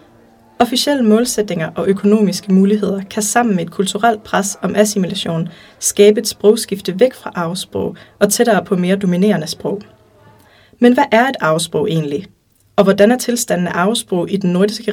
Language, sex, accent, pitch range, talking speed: English, female, Danish, 185-225 Hz, 155 wpm